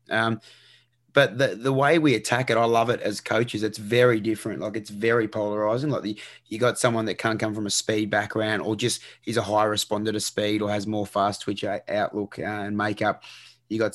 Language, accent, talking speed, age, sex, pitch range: English, Australian, 220 wpm, 20-39, male, 105-115 Hz